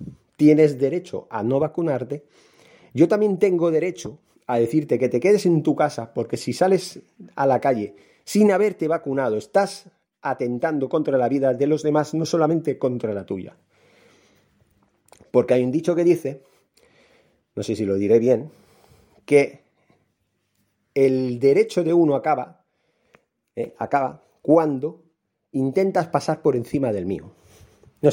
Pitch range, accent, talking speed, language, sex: 120-165 Hz, Spanish, 145 wpm, Spanish, male